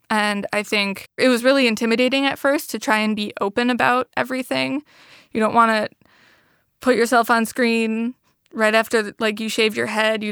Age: 20-39